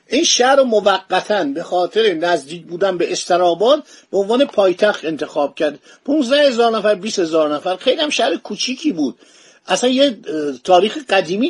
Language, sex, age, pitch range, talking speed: Persian, male, 50-69, 170-240 Hz, 140 wpm